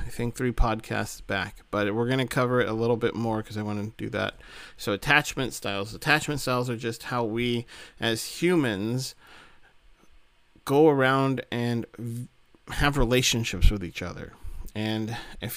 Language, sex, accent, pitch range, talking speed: English, male, American, 110-130 Hz, 160 wpm